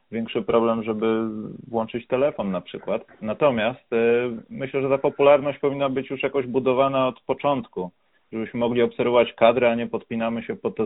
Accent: native